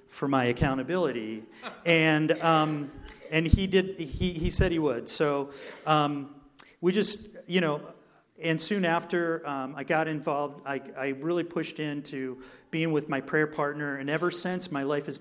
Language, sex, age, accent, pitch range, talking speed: English, male, 40-59, American, 145-175 Hz, 165 wpm